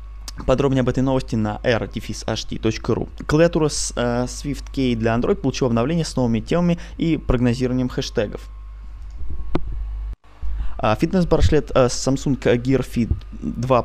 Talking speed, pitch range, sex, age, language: 115 wpm, 110-135 Hz, male, 20-39, Russian